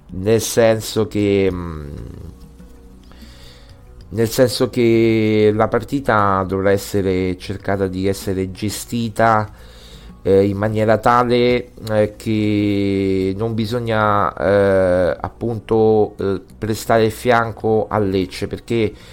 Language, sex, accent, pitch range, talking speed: Italian, male, native, 95-115 Hz, 95 wpm